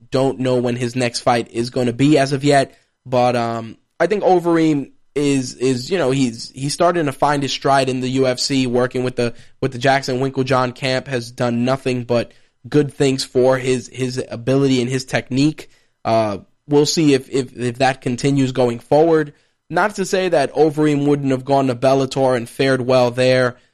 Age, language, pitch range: 20-39, English, 120-135 Hz